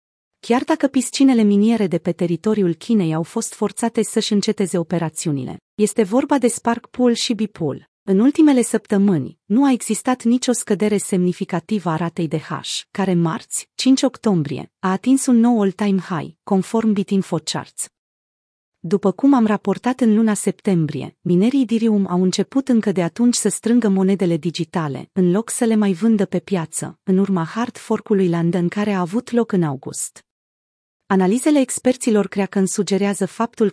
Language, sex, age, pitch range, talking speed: Romanian, female, 30-49, 180-230 Hz, 160 wpm